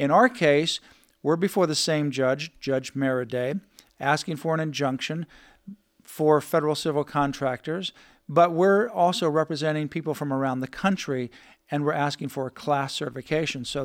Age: 50-69